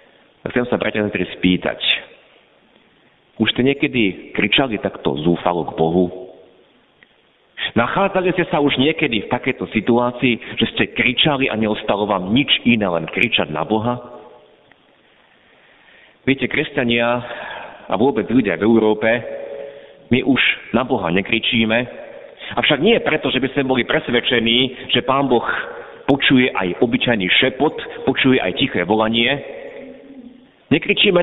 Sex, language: male, Slovak